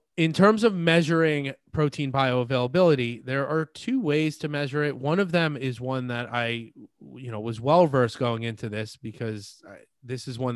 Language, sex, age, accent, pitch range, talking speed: English, male, 30-49, American, 120-145 Hz, 180 wpm